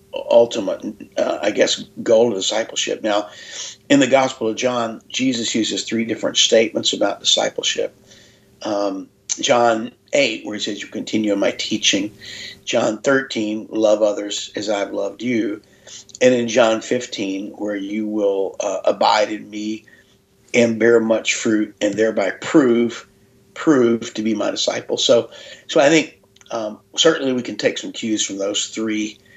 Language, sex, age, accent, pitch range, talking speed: English, male, 50-69, American, 105-125 Hz, 155 wpm